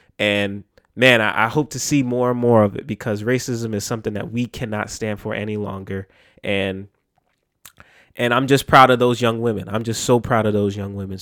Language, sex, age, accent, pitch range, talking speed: English, male, 20-39, American, 110-140 Hz, 210 wpm